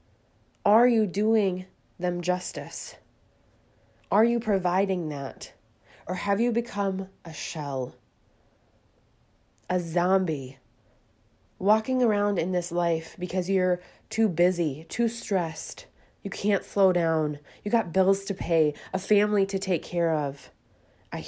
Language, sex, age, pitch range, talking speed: English, female, 20-39, 115-180 Hz, 125 wpm